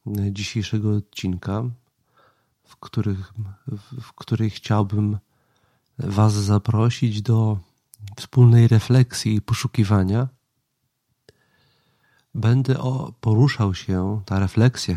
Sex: male